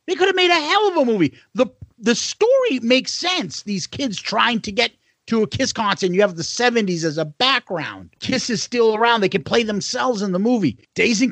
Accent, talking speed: American, 235 wpm